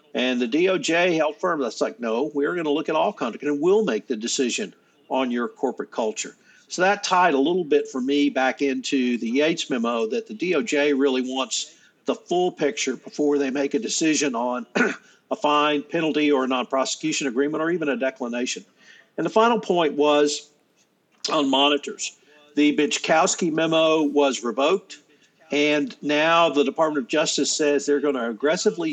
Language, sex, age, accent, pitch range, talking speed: English, male, 50-69, American, 135-155 Hz, 175 wpm